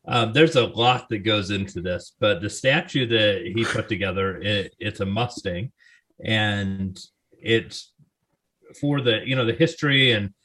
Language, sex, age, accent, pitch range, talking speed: English, male, 40-59, American, 95-115 Hz, 155 wpm